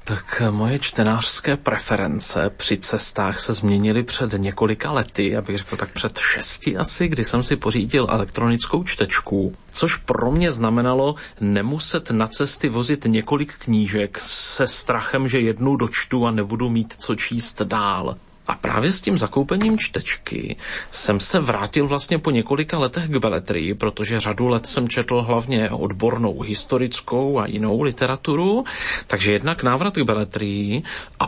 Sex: male